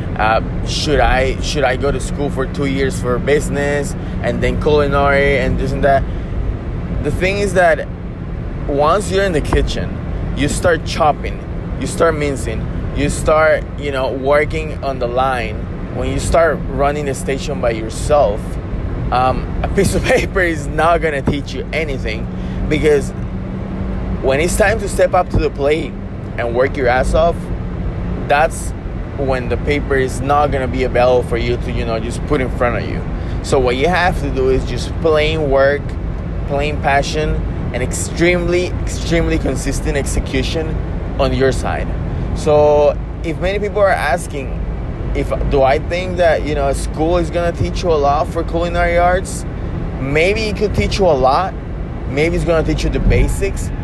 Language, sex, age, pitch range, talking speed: English, male, 20-39, 95-150 Hz, 175 wpm